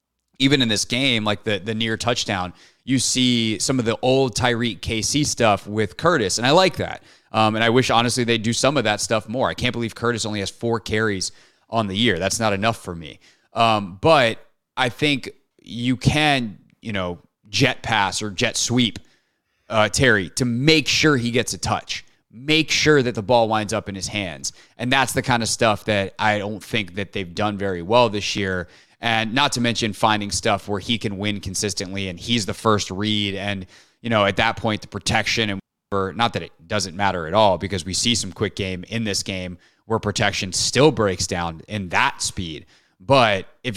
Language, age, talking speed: English, 30-49, 210 wpm